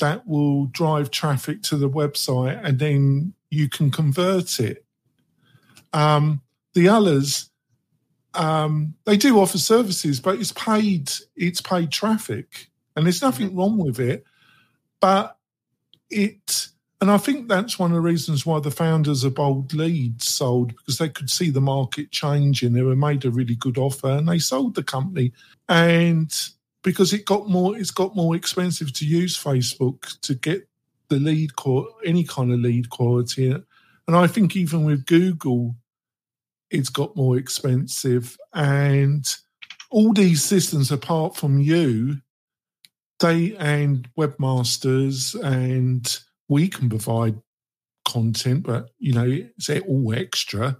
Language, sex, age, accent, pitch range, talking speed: English, male, 50-69, British, 130-175 Hz, 145 wpm